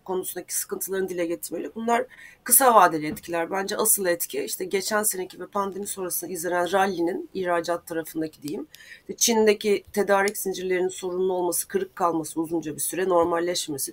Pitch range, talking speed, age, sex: 175-220 Hz, 140 wpm, 30-49, female